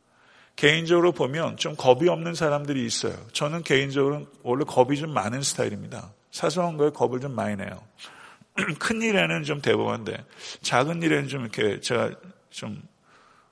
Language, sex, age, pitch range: Korean, male, 50-69, 125-165 Hz